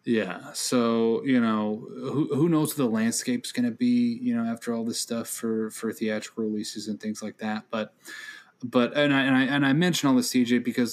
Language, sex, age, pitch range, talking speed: English, male, 30-49, 105-130 Hz, 220 wpm